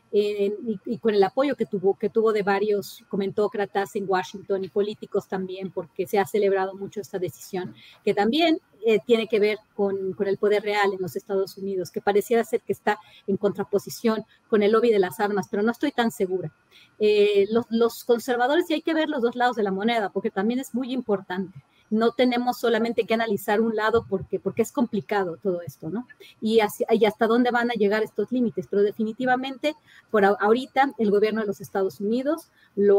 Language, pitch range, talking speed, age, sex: Spanish, 195-225 Hz, 205 wpm, 30-49, female